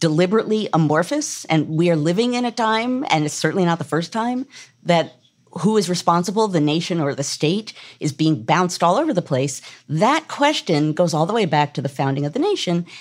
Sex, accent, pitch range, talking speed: female, American, 145-200 Hz, 210 wpm